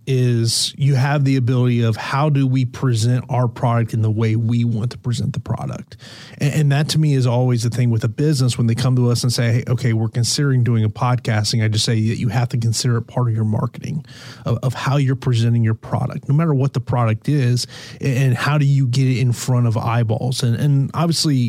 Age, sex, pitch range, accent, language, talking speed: 30-49, male, 120-150 Hz, American, English, 240 wpm